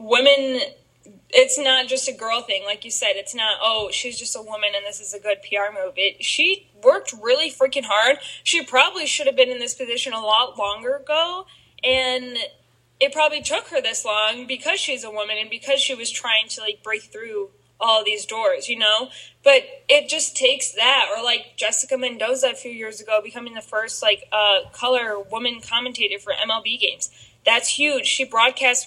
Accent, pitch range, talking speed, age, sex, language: American, 210-280 Hz, 195 wpm, 10-29, female, English